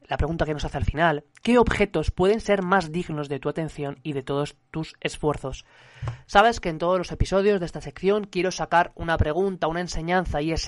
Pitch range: 150-200 Hz